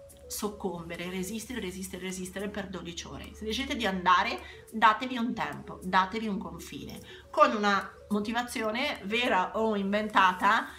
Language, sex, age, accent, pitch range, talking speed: Italian, female, 40-59, native, 185-225 Hz, 130 wpm